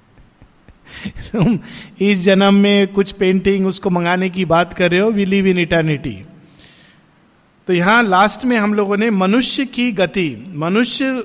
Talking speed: 130 wpm